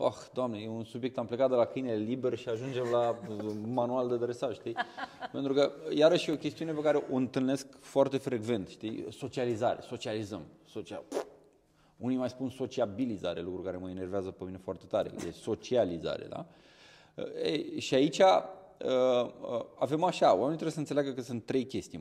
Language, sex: Romanian, male